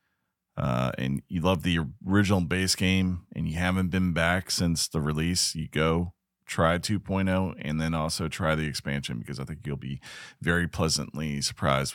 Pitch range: 75-105 Hz